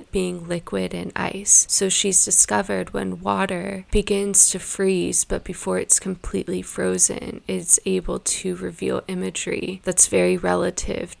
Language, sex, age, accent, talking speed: English, female, 20-39, American, 135 wpm